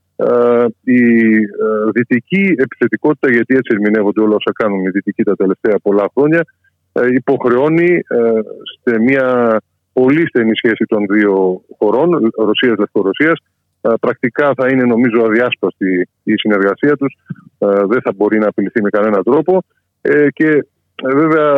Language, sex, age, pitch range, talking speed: Greek, male, 20-39, 110-145 Hz, 145 wpm